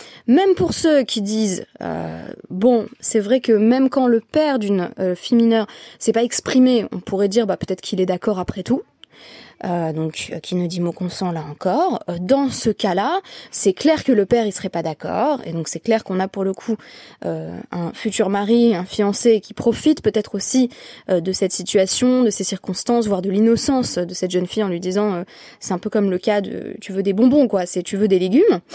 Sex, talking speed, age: female, 230 wpm, 20-39